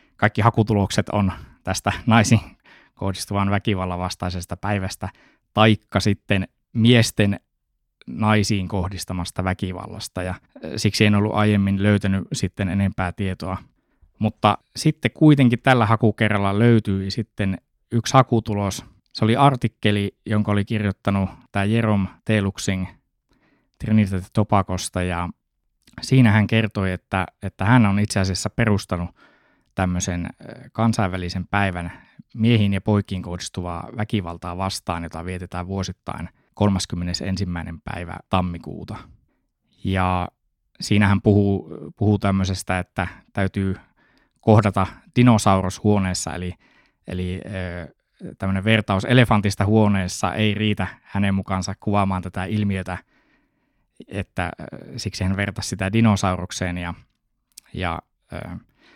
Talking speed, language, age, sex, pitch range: 100 wpm, Finnish, 20-39, male, 95-110 Hz